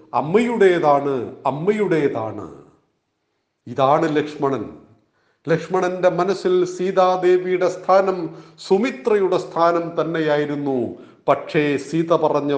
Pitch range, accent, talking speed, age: 160-205 Hz, native, 65 wpm, 40-59